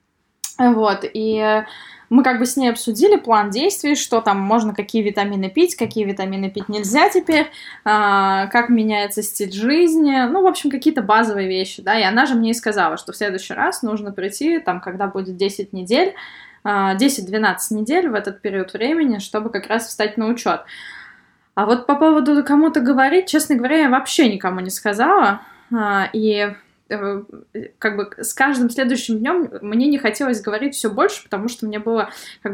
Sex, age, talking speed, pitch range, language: female, 20-39, 170 wpm, 205-265 Hz, Russian